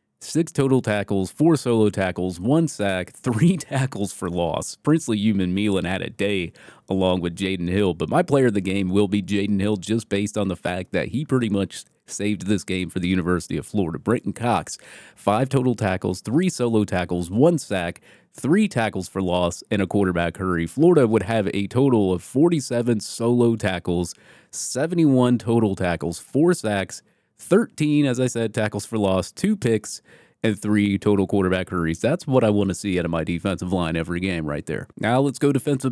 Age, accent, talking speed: 30-49, American, 190 wpm